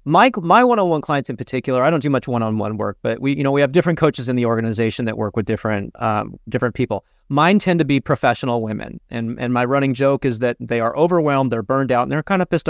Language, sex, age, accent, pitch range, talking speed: English, male, 30-49, American, 120-160 Hz, 260 wpm